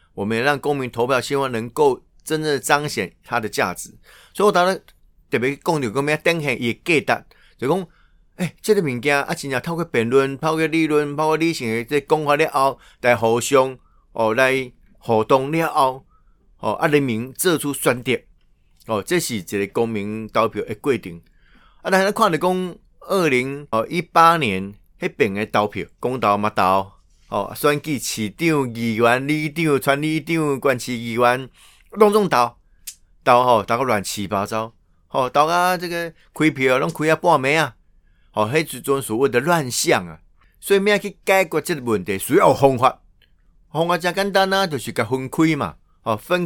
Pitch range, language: 110-160 Hz, Chinese